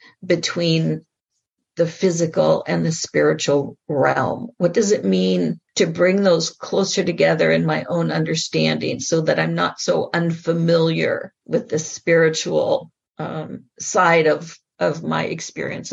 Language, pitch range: English, 160-205 Hz